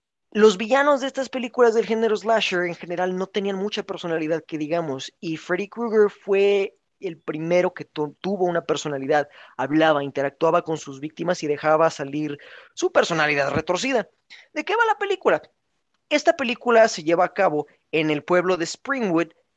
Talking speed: 165 wpm